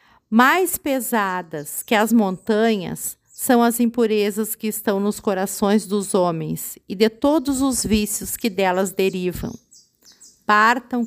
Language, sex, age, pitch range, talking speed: Portuguese, female, 50-69, 190-235 Hz, 125 wpm